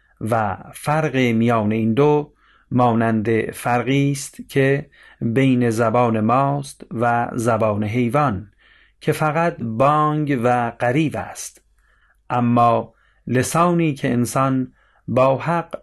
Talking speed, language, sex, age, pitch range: 100 wpm, Persian, male, 40-59, 115-145 Hz